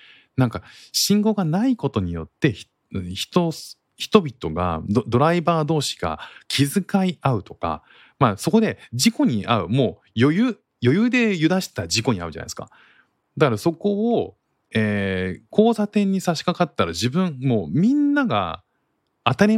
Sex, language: male, Japanese